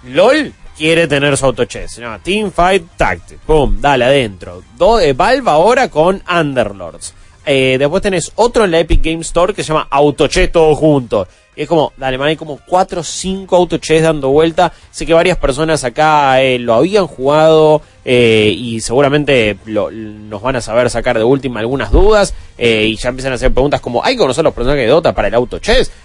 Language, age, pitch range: Spanish, 20-39, 120-165 Hz